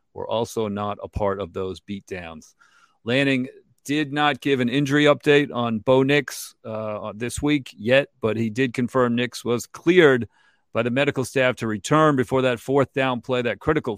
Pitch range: 105-130 Hz